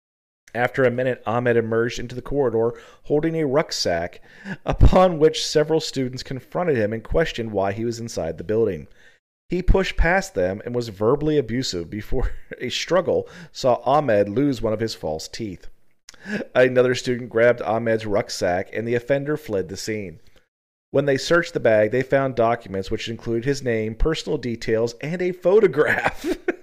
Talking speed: 160 wpm